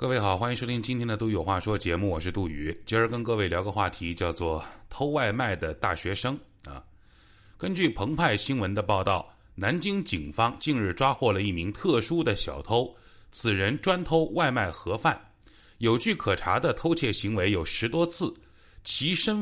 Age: 30-49